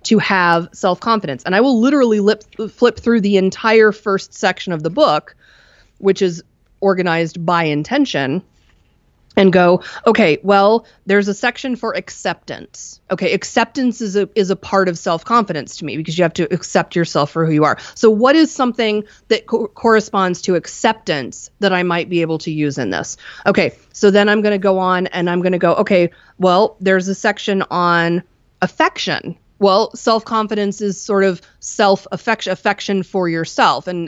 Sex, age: female, 30-49